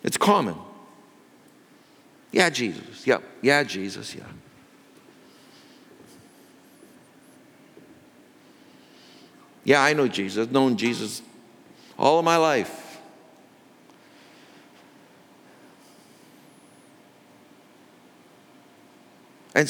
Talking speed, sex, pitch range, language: 65 wpm, male, 135-180 Hz, English